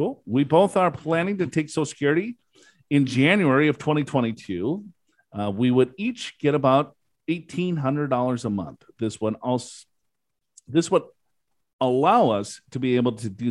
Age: 50-69